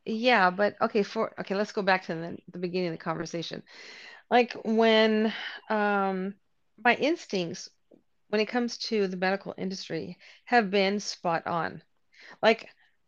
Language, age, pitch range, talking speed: English, 40-59, 185-235 Hz, 145 wpm